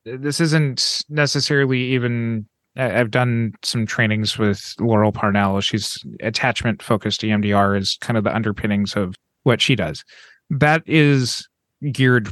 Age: 30-49